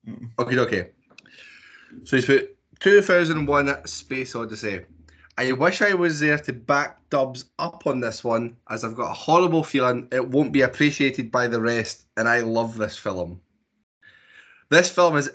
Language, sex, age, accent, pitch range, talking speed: English, male, 20-39, British, 115-145 Hz, 160 wpm